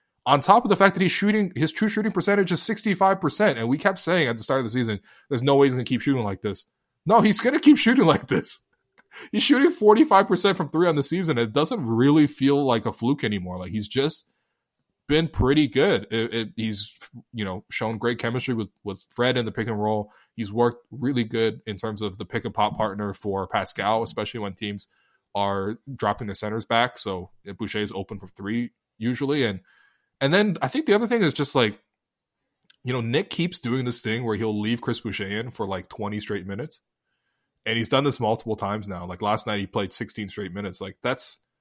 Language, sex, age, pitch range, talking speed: English, male, 20-39, 105-145 Hz, 230 wpm